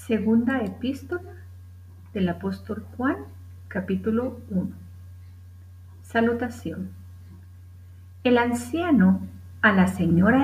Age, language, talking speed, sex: 50-69, Spanish, 75 wpm, female